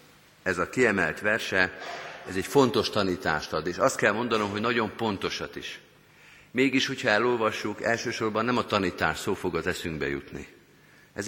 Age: 50-69